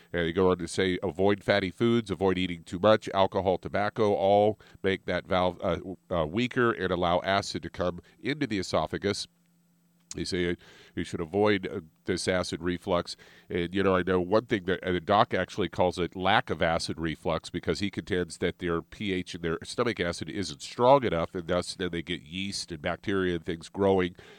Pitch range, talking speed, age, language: 85-100 Hz, 195 wpm, 50-69, English